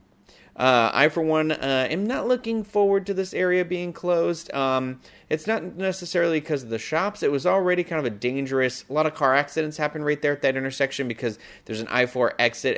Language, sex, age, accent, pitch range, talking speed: English, male, 30-49, American, 115-155 Hz, 210 wpm